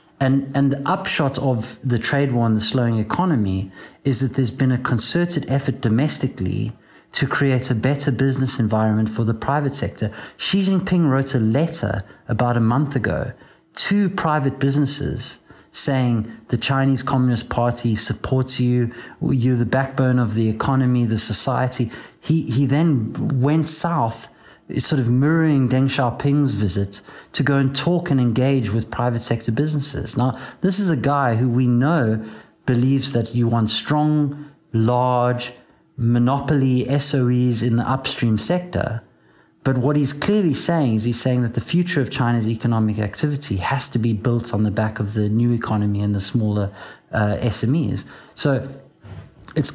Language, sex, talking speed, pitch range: English, male, 160 wpm, 115-140 Hz